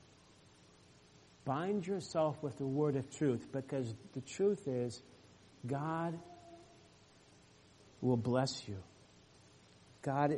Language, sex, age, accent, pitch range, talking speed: English, male, 50-69, American, 130-170 Hz, 95 wpm